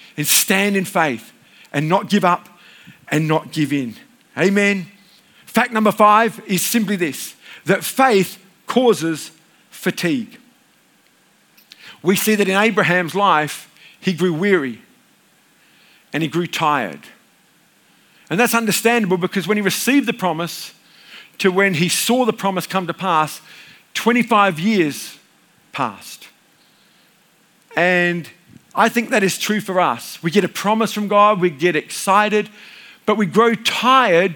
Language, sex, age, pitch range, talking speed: English, male, 50-69, 180-215 Hz, 135 wpm